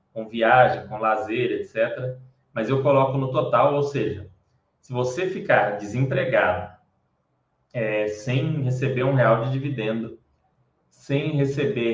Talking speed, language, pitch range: 120 wpm, Portuguese, 110-145 Hz